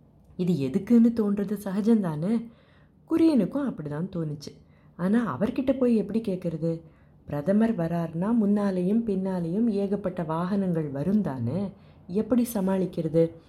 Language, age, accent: Tamil, 30-49, native